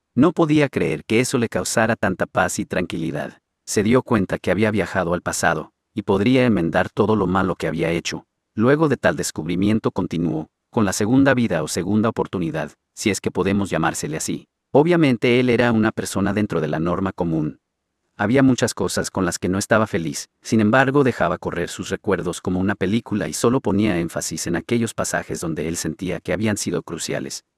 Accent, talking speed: Mexican, 190 wpm